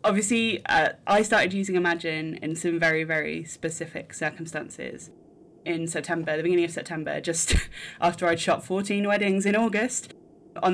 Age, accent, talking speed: 20-39, British, 150 wpm